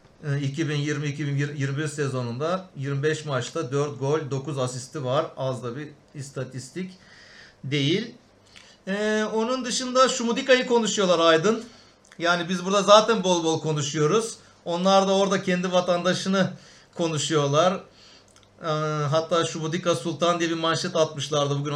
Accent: native